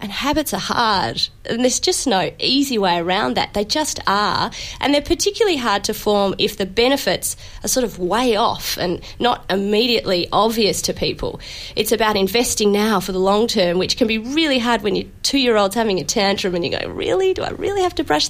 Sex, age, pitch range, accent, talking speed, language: female, 30-49, 190-255 Hz, Australian, 215 wpm, English